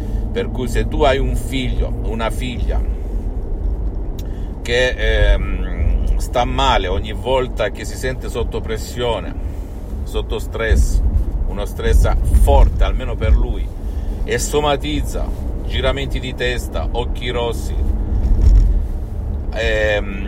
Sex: male